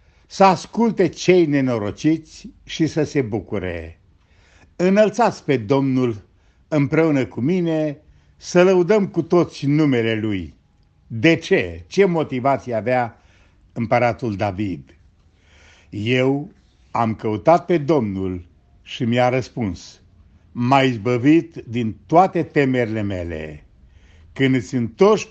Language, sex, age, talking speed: Romanian, male, 60-79, 105 wpm